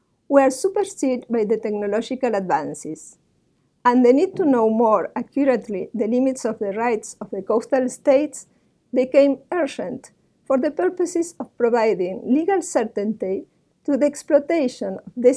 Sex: female